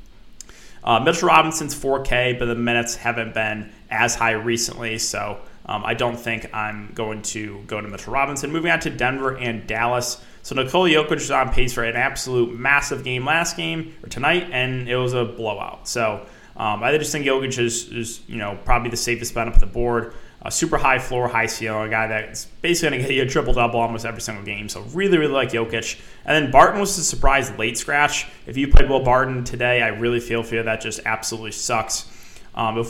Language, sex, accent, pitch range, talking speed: English, male, American, 110-135 Hz, 215 wpm